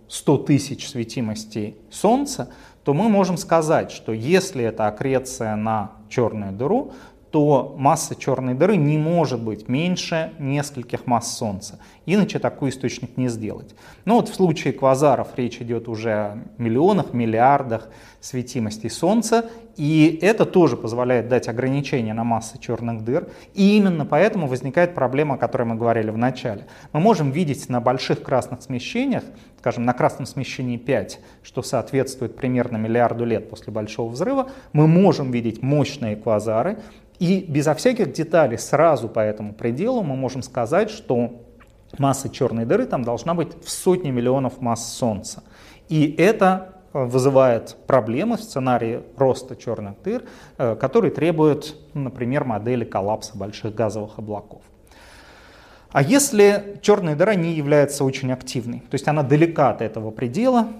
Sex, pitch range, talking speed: male, 115-160 Hz, 145 wpm